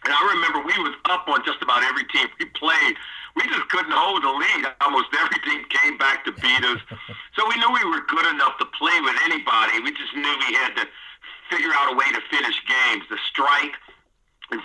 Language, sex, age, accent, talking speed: English, male, 50-69, American, 220 wpm